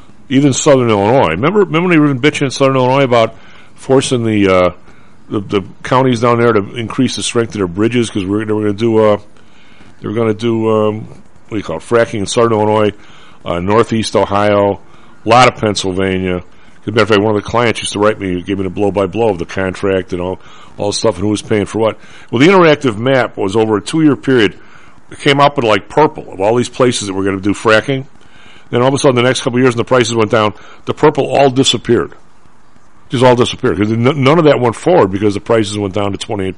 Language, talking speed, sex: English, 240 wpm, male